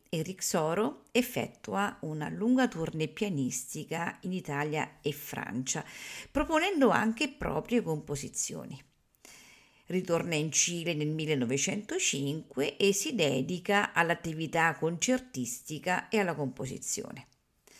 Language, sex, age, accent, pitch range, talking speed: Italian, female, 50-69, native, 150-215 Hz, 95 wpm